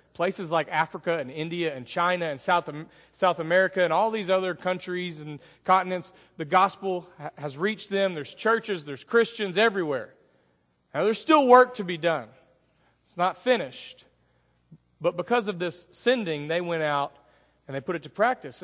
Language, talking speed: English, 170 wpm